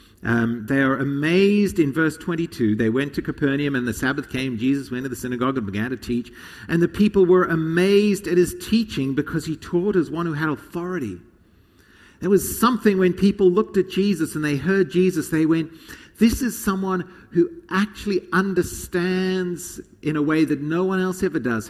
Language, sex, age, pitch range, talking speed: English, male, 50-69, 125-185 Hz, 190 wpm